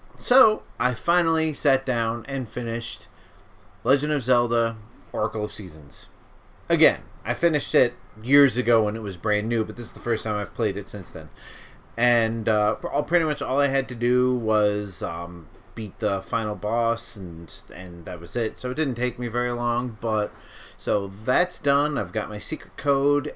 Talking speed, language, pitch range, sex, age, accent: 185 wpm, English, 100-125 Hz, male, 30-49, American